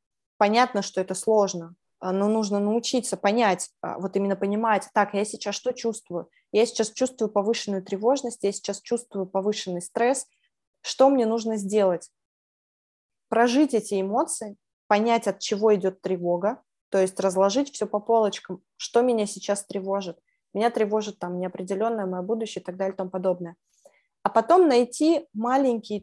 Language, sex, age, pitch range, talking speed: Russian, female, 20-39, 190-230 Hz, 150 wpm